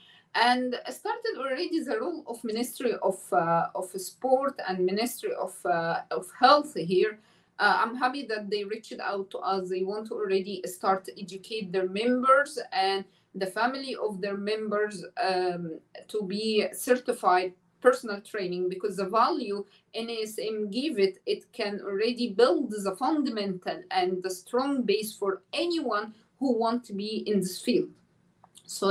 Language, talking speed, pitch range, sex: English, 155 wpm, 195-245 Hz, female